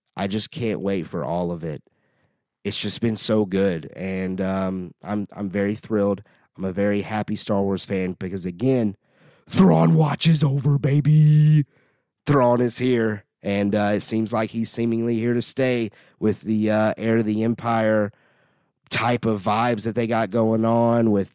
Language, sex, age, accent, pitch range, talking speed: English, male, 30-49, American, 100-120 Hz, 170 wpm